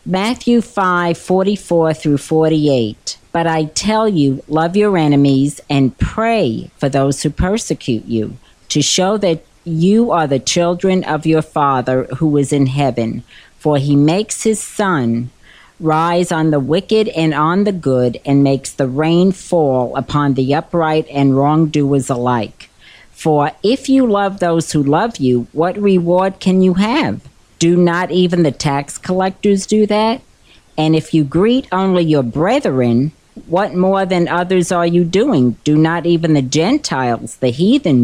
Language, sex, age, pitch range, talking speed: English, female, 50-69, 140-185 Hz, 160 wpm